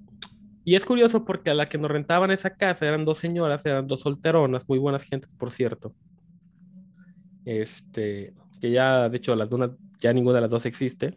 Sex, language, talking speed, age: male, Spanish, 190 wpm, 20-39